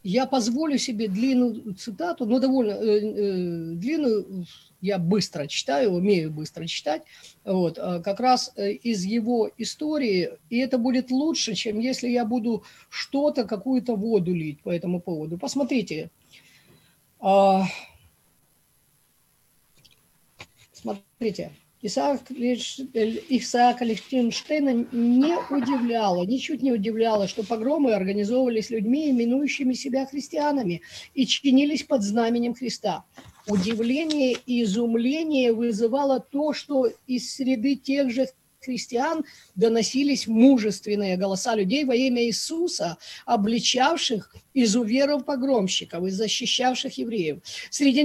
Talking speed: 100 wpm